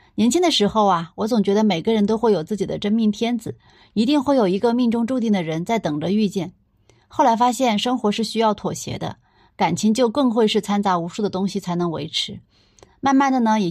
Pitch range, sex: 185-230 Hz, female